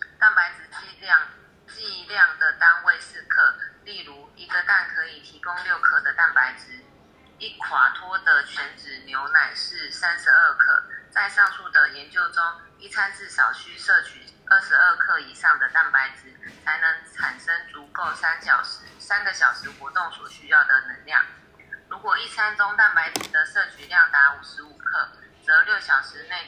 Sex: female